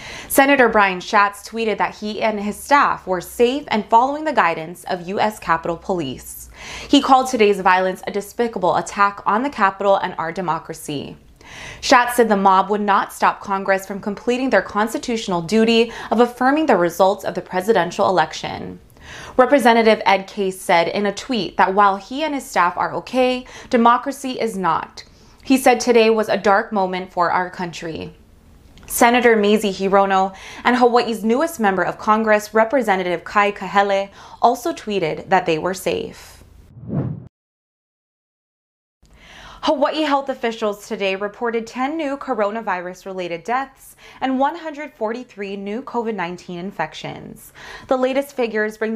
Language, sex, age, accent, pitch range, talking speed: English, female, 20-39, American, 185-245 Hz, 145 wpm